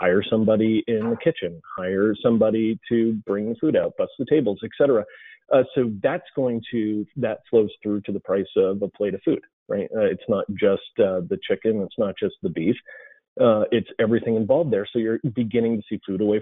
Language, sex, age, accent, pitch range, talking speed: English, male, 30-49, American, 100-135 Hz, 210 wpm